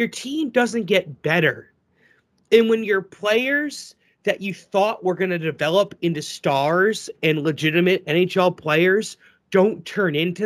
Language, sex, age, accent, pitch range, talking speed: English, male, 30-49, American, 180-235 Hz, 145 wpm